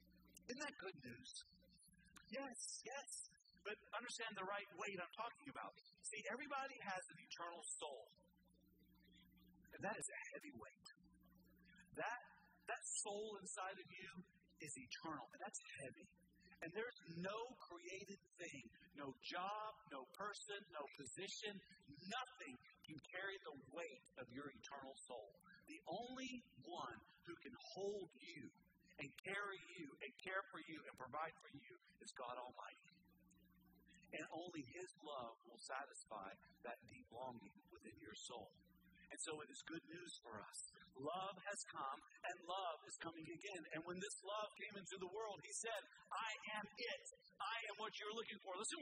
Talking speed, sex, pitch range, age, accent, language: 155 wpm, male, 160-210 Hz, 50-69, American, English